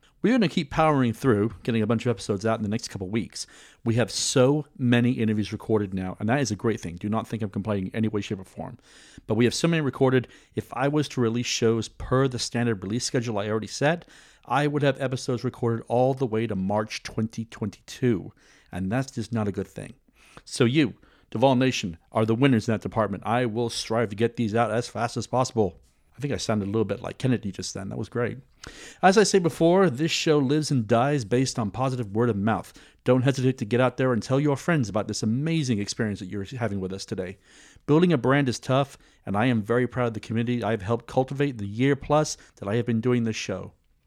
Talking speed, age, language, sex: 240 wpm, 40-59, English, male